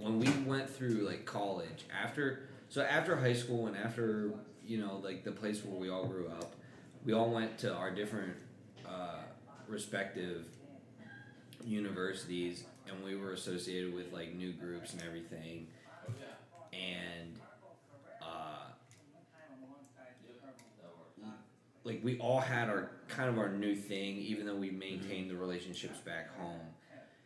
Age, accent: 20-39, American